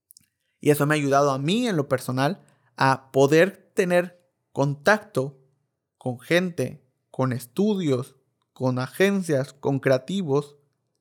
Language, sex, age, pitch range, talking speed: Spanish, male, 30-49, 125-150 Hz, 120 wpm